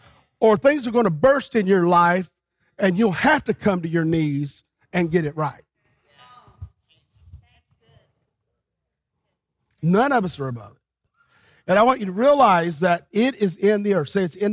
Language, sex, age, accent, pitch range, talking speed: English, male, 40-59, American, 175-230 Hz, 175 wpm